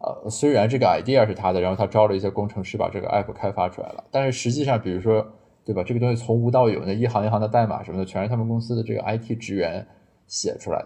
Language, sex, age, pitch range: Chinese, male, 20-39, 100-120 Hz